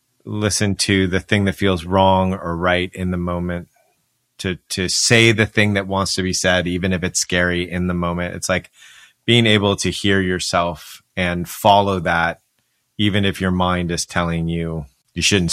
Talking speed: 185 wpm